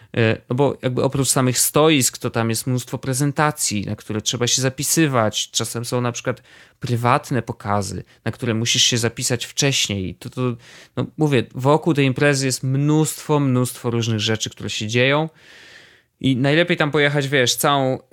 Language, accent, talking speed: Polish, native, 160 wpm